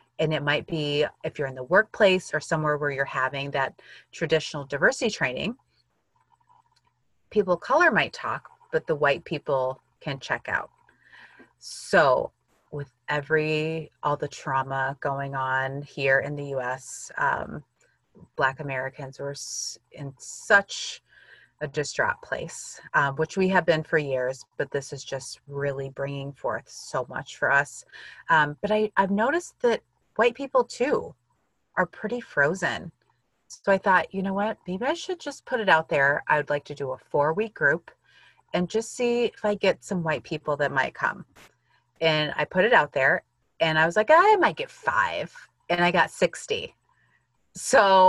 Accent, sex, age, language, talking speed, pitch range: American, female, 30-49, English, 170 wpm, 140-225 Hz